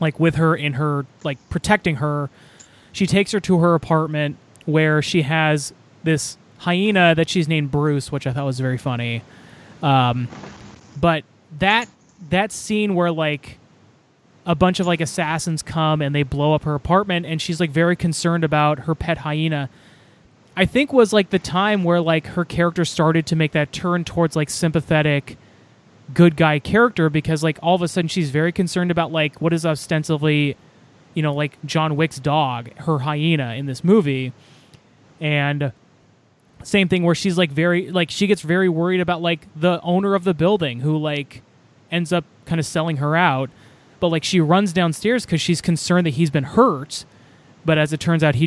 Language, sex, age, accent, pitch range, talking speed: English, male, 20-39, American, 145-175 Hz, 185 wpm